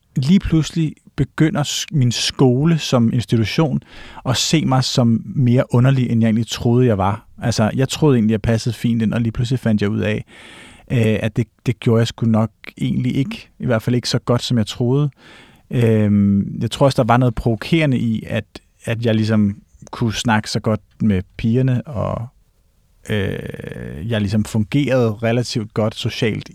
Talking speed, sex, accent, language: 170 wpm, male, native, Danish